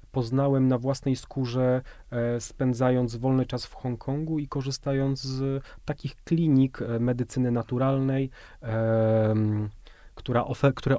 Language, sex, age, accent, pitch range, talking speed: Polish, male, 30-49, native, 110-130 Hz, 105 wpm